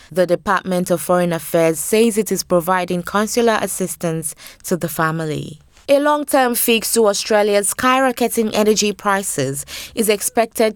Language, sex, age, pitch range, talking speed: English, female, 20-39, 175-210 Hz, 135 wpm